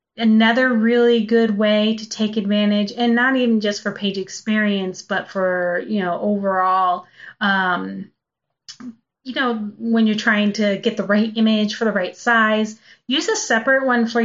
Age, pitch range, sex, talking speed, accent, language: 30-49, 190-225 Hz, female, 165 wpm, American, English